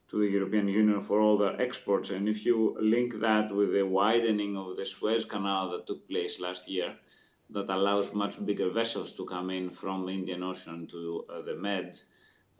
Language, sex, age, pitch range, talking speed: English, male, 30-49, 95-110 Hz, 195 wpm